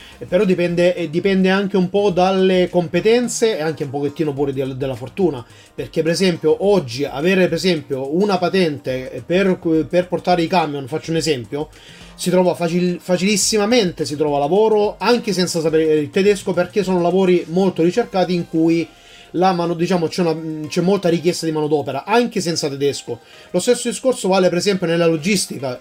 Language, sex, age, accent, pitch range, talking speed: Italian, male, 30-49, native, 155-185 Hz, 165 wpm